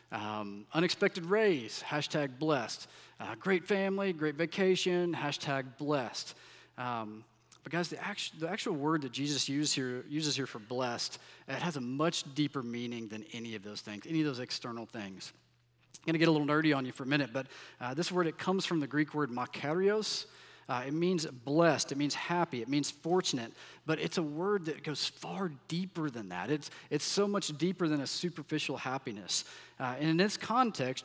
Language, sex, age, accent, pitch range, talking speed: English, male, 40-59, American, 130-170 Hz, 190 wpm